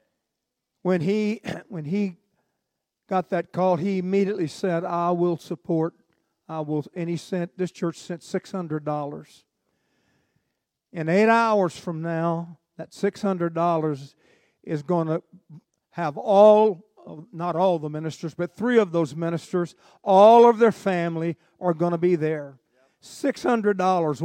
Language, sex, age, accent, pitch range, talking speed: English, male, 50-69, American, 170-205 Hz, 130 wpm